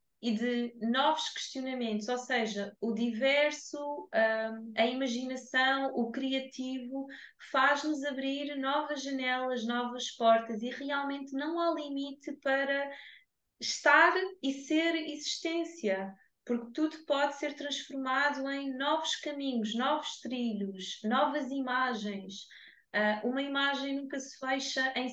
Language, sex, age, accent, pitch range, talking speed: Portuguese, female, 20-39, Brazilian, 235-290 Hz, 110 wpm